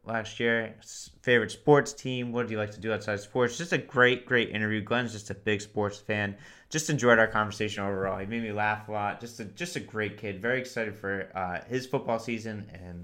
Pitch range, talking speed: 100-120 Hz, 230 wpm